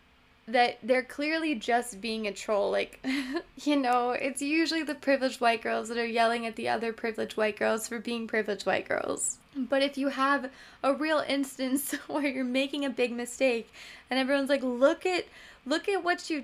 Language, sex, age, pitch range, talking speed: English, female, 10-29, 235-305 Hz, 190 wpm